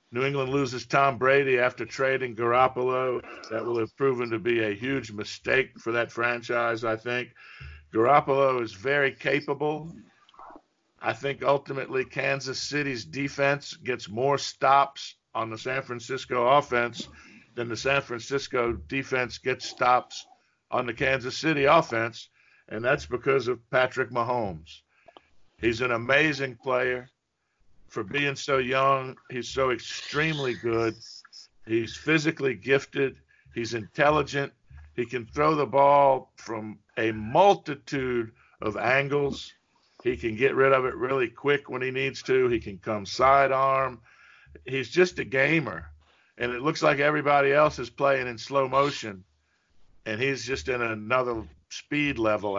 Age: 50-69